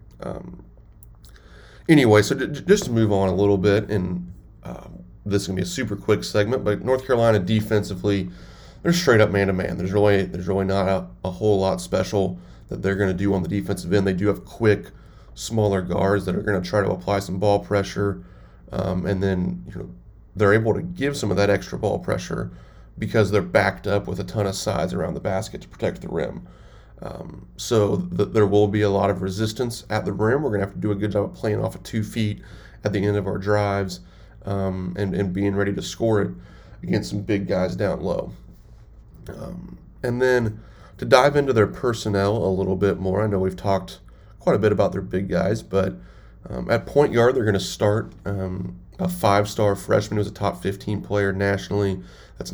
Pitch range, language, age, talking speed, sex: 95-105 Hz, English, 30-49, 215 wpm, male